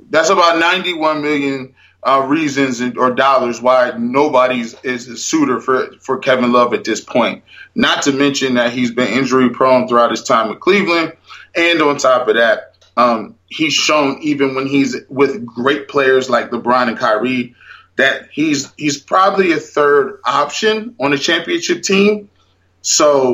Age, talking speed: 20-39, 160 wpm